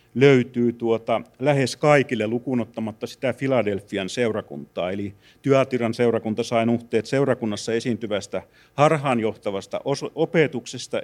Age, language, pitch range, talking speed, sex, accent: 30-49, Finnish, 115-140 Hz, 90 wpm, male, native